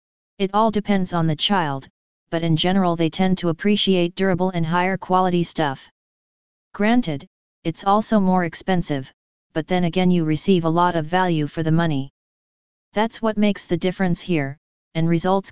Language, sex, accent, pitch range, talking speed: English, female, American, 165-190 Hz, 165 wpm